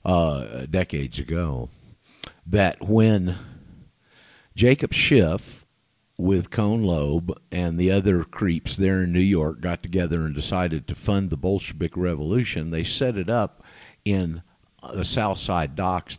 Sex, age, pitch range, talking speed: male, 50-69, 80-105 Hz, 135 wpm